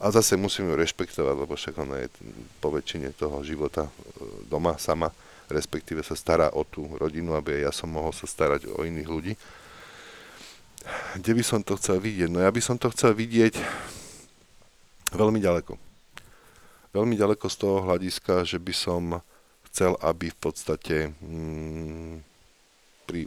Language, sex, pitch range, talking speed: Slovak, male, 75-90 Hz, 145 wpm